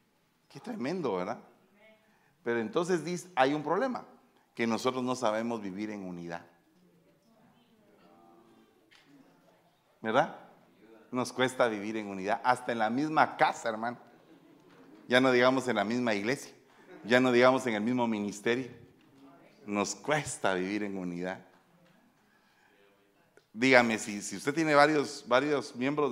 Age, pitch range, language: 40-59, 100-135 Hz, Spanish